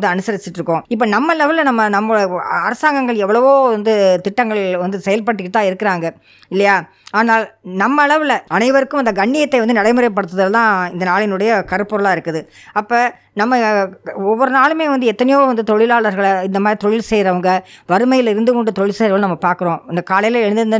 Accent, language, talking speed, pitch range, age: Indian, English, 115 wpm, 180-225 Hz, 20-39